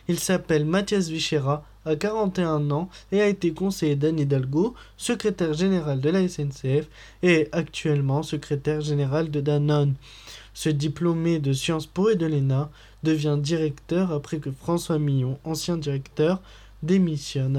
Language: French